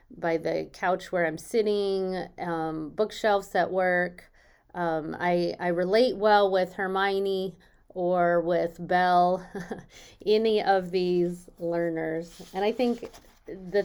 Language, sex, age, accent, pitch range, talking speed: English, female, 30-49, American, 165-195 Hz, 120 wpm